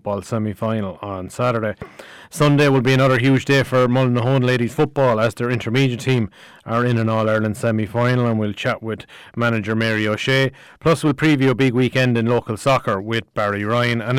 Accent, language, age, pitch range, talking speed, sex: Irish, English, 30-49, 115-130 Hz, 180 wpm, male